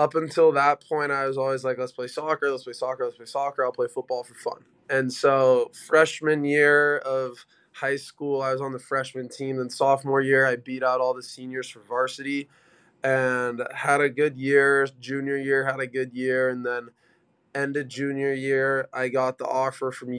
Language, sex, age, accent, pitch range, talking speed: English, male, 20-39, American, 130-140 Hz, 200 wpm